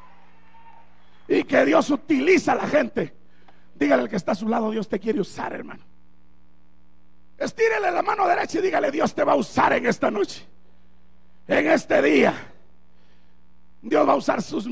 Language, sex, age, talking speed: Spanish, male, 50-69, 165 wpm